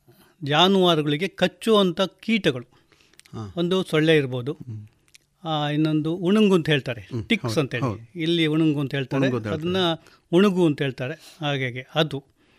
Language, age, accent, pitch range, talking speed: Kannada, 30-49, native, 130-170 Hz, 105 wpm